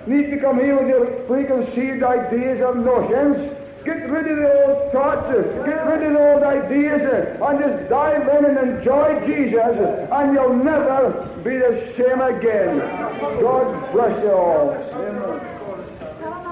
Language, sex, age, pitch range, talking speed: English, male, 60-79, 220-275 Hz, 145 wpm